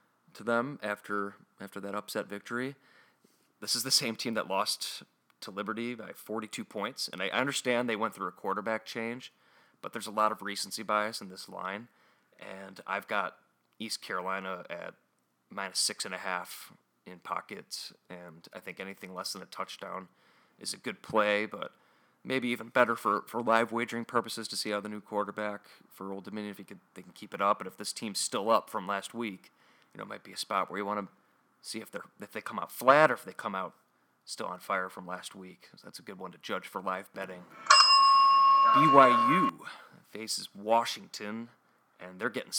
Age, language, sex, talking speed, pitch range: 30-49, English, male, 200 wpm, 100-120 Hz